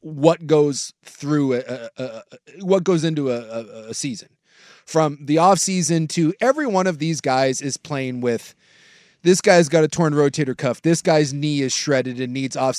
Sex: male